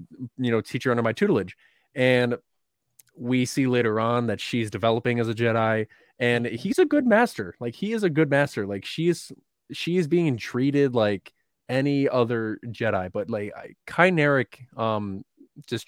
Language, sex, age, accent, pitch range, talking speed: English, male, 20-39, American, 110-140 Hz, 165 wpm